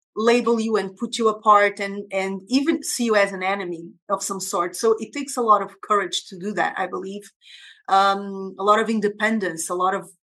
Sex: female